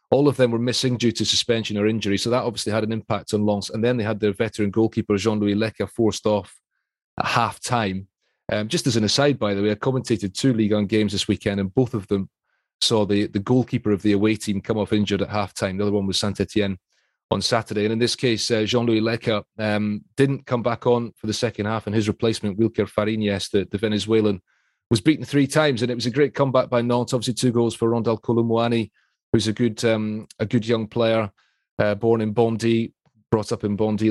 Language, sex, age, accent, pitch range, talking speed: English, male, 30-49, British, 105-120 Hz, 230 wpm